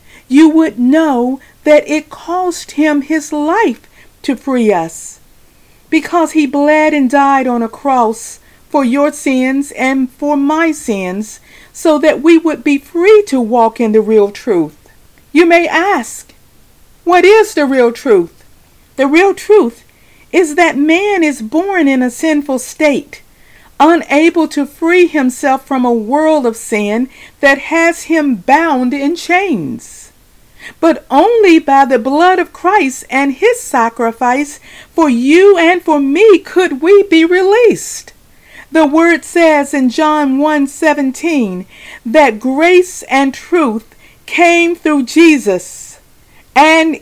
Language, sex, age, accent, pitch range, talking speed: English, female, 40-59, American, 270-335 Hz, 140 wpm